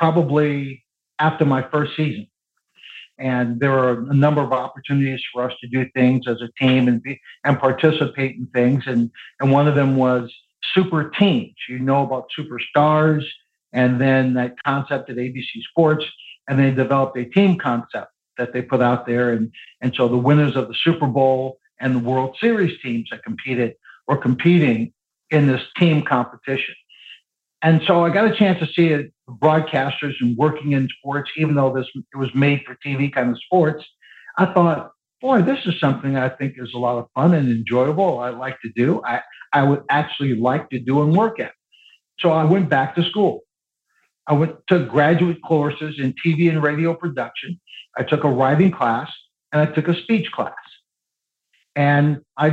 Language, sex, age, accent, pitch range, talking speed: English, male, 60-79, American, 125-155 Hz, 185 wpm